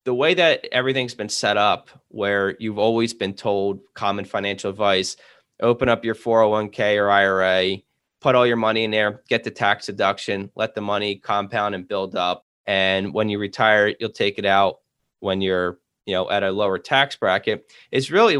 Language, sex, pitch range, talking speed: English, male, 100-120 Hz, 185 wpm